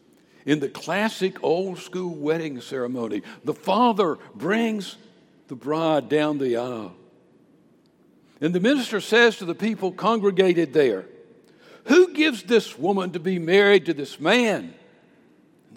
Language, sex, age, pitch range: English, male, 60-79, 140-185 Hz